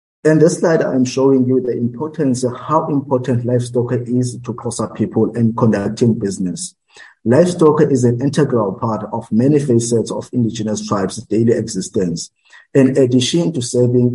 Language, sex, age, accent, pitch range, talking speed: English, male, 50-69, South African, 115-140 Hz, 155 wpm